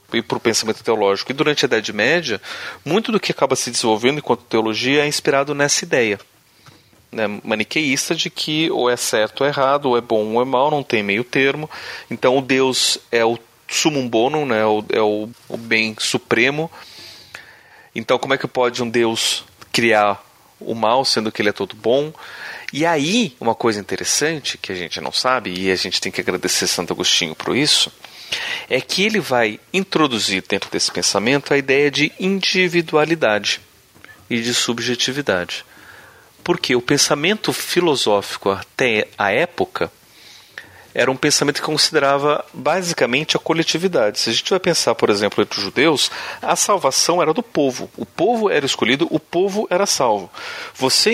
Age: 30-49